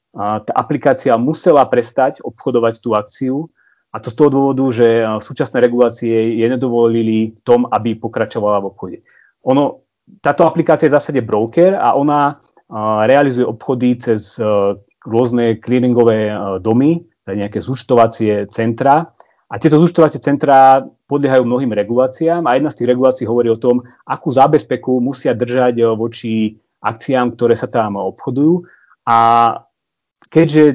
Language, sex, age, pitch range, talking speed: Slovak, male, 30-49, 115-140 Hz, 140 wpm